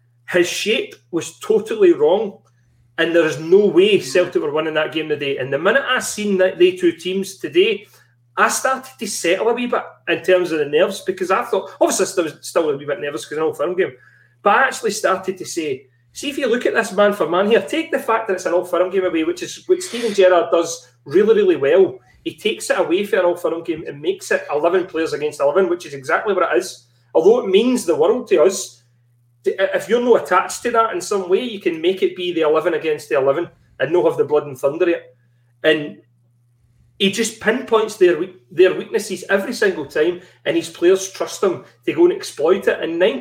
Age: 30-49